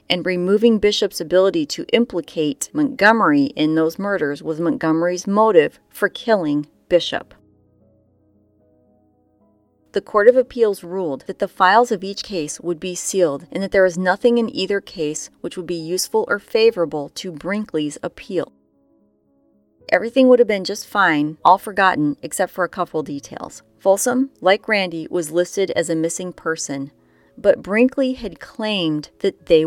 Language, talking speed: English, 150 wpm